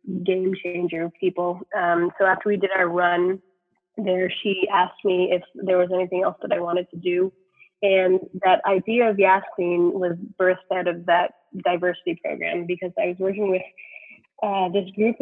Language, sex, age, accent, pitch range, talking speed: English, female, 20-39, American, 180-210 Hz, 170 wpm